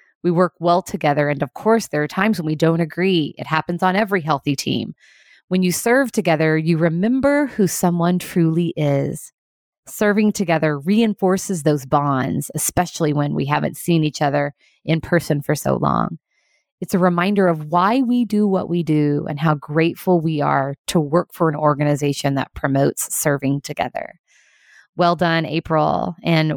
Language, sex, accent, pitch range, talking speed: English, female, American, 155-195 Hz, 170 wpm